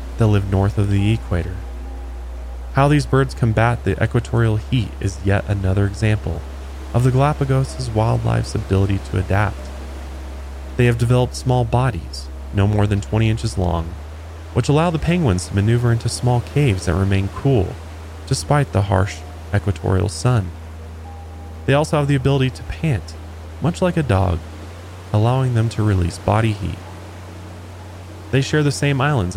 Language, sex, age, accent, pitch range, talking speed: English, male, 20-39, American, 90-120 Hz, 150 wpm